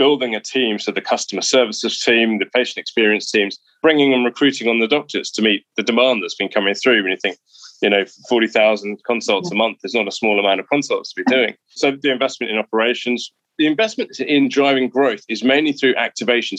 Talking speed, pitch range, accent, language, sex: 215 wpm, 105-135 Hz, British, English, male